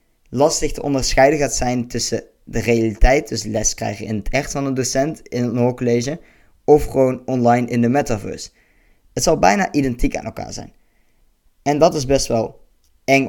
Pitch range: 115-135 Hz